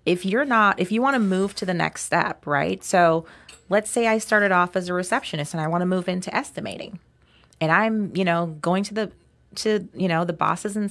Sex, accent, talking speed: female, American, 230 wpm